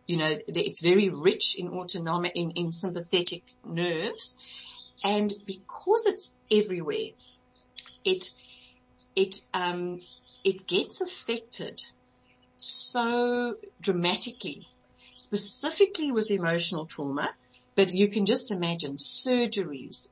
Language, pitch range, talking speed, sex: English, 170-225 Hz, 100 wpm, female